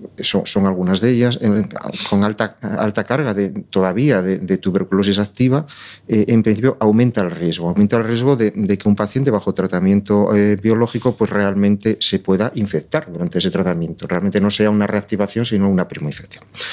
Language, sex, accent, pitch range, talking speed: Spanish, male, Spanish, 95-110 Hz, 185 wpm